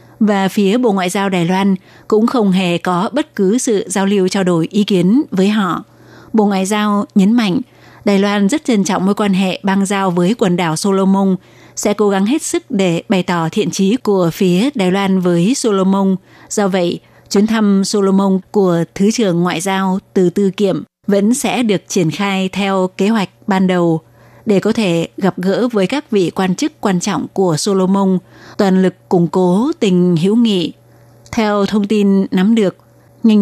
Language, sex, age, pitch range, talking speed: Vietnamese, female, 20-39, 180-215 Hz, 190 wpm